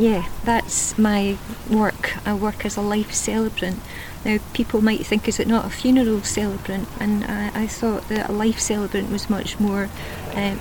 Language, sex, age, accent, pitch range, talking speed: English, female, 40-59, British, 205-225 Hz, 180 wpm